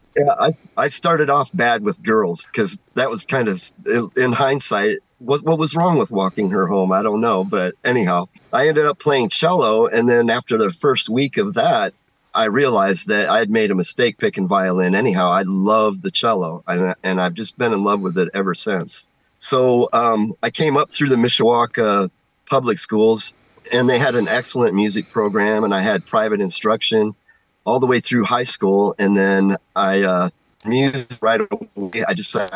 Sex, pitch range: male, 95-145 Hz